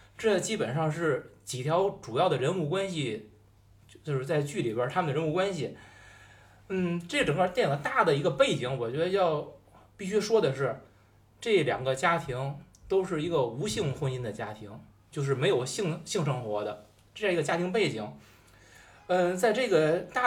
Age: 20-39